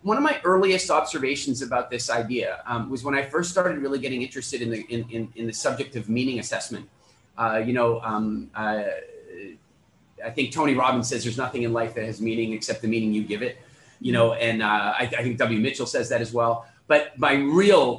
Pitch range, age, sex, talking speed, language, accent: 115-135 Hz, 30-49, male, 220 wpm, English, American